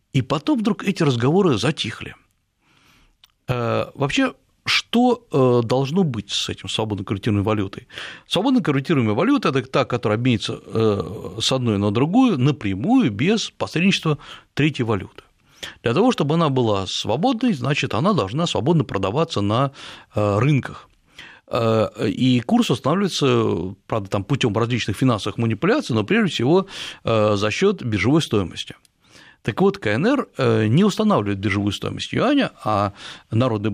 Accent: native